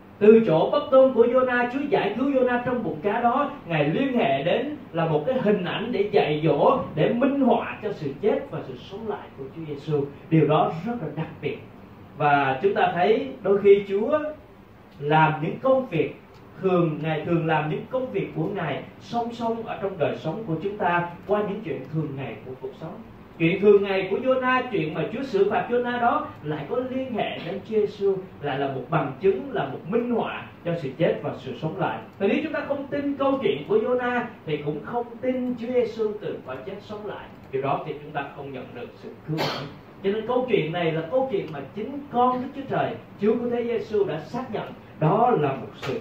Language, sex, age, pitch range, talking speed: Vietnamese, male, 30-49, 160-245 Hz, 230 wpm